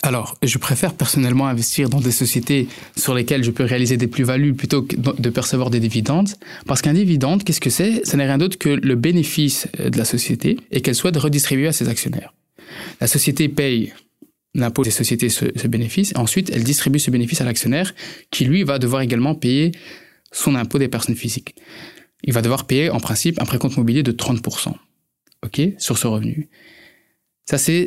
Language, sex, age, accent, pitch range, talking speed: French, male, 20-39, French, 120-160 Hz, 190 wpm